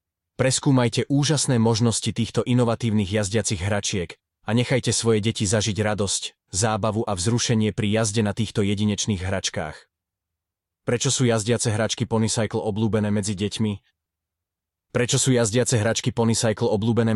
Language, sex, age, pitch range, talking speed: Slovak, male, 20-39, 95-115 Hz, 125 wpm